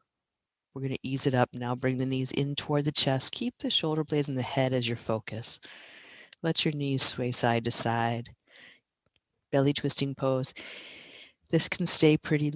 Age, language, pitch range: 40-59, English, 130-155 Hz